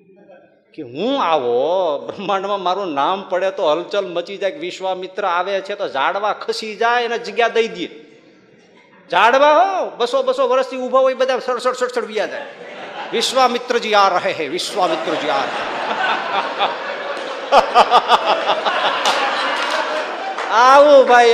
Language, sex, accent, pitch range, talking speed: Gujarati, male, native, 180-260 Hz, 85 wpm